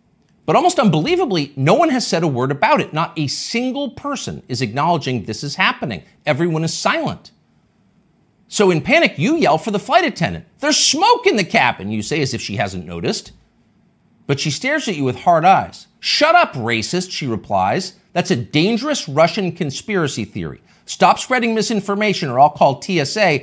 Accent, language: American, English